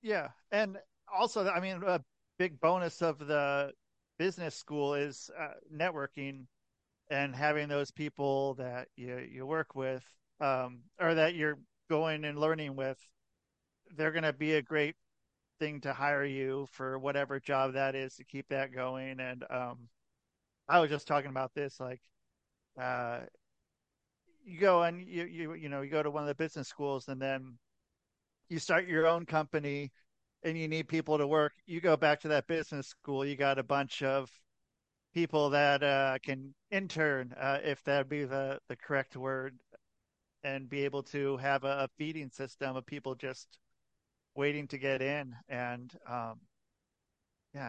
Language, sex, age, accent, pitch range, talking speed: English, male, 40-59, American, 130-155 Hz, 165 wpm